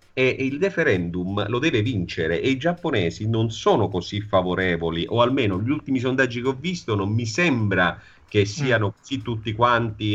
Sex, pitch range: male, 95-120 Hz